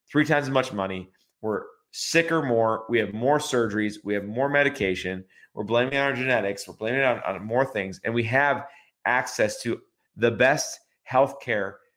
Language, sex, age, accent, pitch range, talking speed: English, male, 30-49, American, 110-135 Hz, 180 wpm